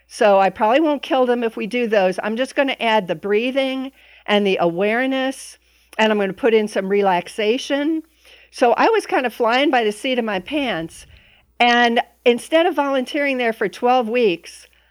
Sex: female